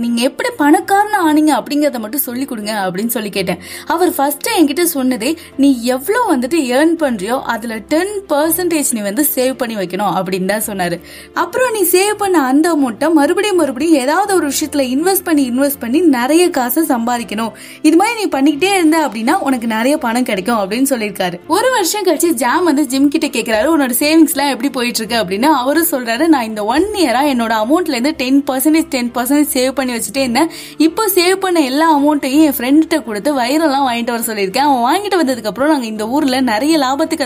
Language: Tamil